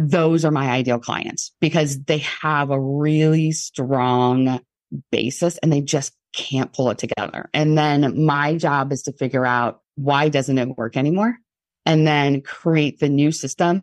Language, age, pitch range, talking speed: English, 30-49, 130-165 Hz, 165 wpm